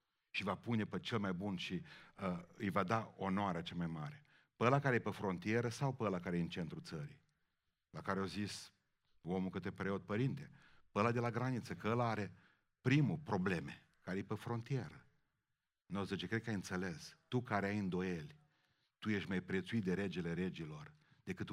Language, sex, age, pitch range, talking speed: Romanian, male, 40-59, 95-120 Hz, 190 wpm